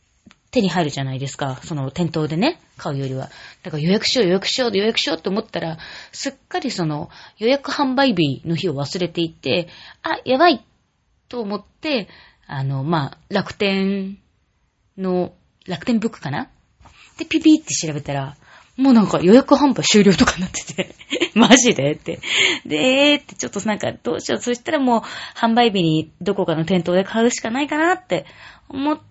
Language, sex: Japanese, female